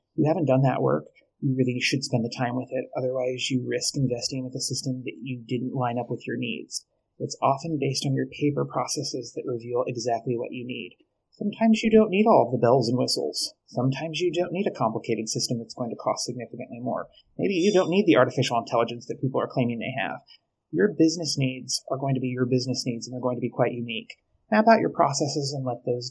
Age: 30-49